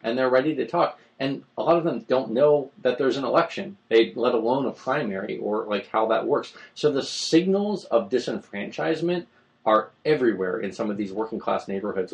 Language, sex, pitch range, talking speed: English, male, 100-130 Hz, 195 wpm